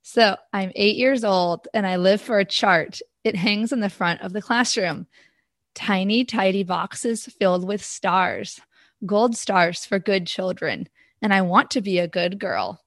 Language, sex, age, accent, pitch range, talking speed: English, female, 20-39, American, 190-240 Hz, 175 wpm